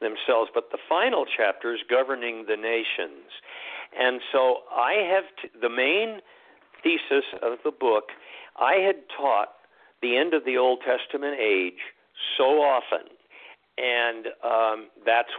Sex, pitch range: male, 115-130 Hz